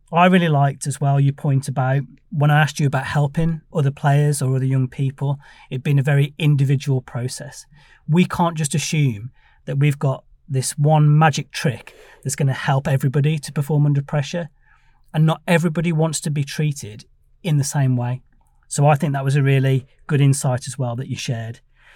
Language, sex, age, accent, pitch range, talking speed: English, male, 30-49, British, 130-155 Hz, 195 wpm